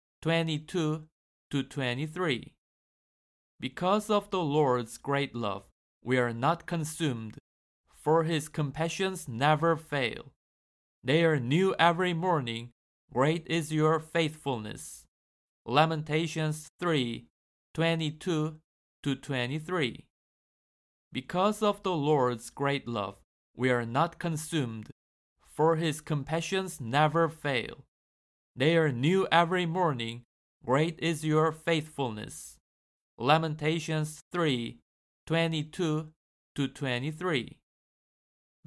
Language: Korean